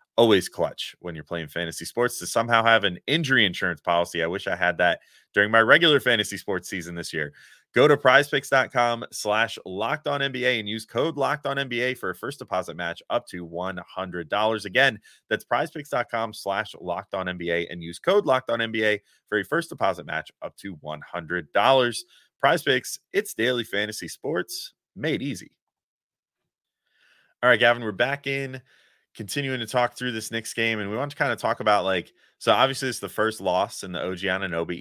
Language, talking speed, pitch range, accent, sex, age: English, 185 wpm, 90-120 Hz, American, male, 30-49